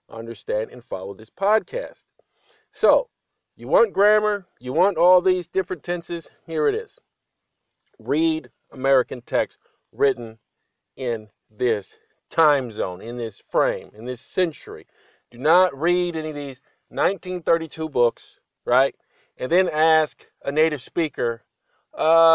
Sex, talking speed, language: male, 130 wpm, English